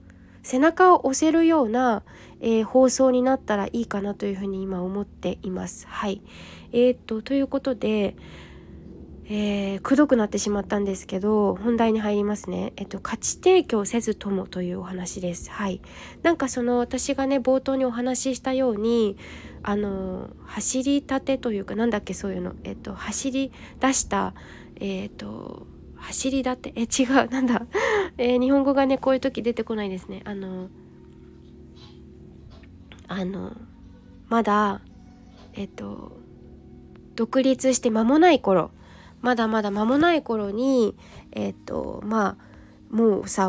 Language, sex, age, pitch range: Japanese, female, 20-39, 200-265 Hz